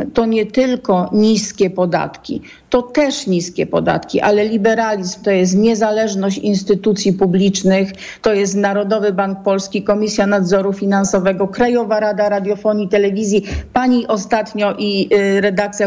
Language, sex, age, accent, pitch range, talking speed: Polish, female, 50-69, native, 195-235 Hz, 120 wpm